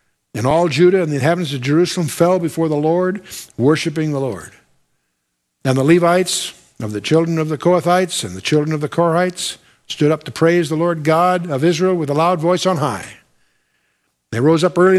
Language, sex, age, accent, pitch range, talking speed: English, male, 60-79, American, 150-190 Hz, 195 wpm